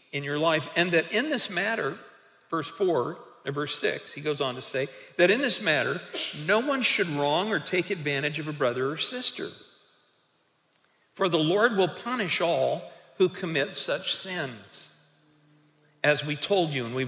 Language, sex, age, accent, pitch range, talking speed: English, male, 50-69, American, 150-200 Hz, 175 wpm